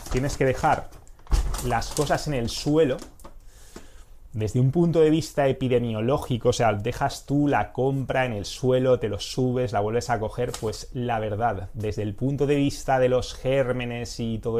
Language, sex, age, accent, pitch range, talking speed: English, male, 20-39, Spanish, 100-125 Hz, 175 wpm